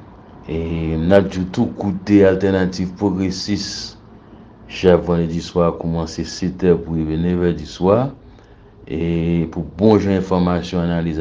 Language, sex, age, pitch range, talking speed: French, male, 60-79, 85-100 Hz, 105 wpm